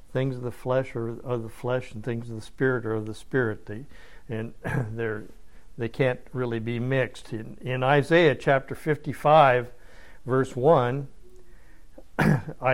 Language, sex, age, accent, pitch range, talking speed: English, male, 60-79, American, 115-145 Hz, 155 wpm